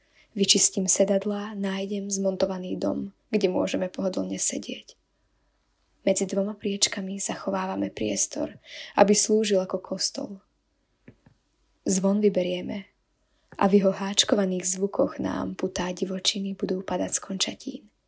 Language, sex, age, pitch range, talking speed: Slovak, female, 20-39, 190-210 Hz, 105 wpm